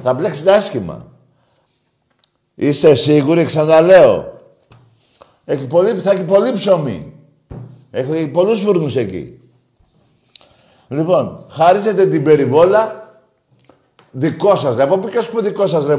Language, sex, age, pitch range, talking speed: Greek, male, 50-69, 135-180 Hz, 105 wpm